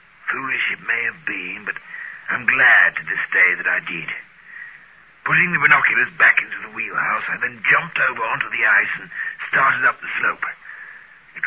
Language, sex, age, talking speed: English, male, 60-79, 180 wpm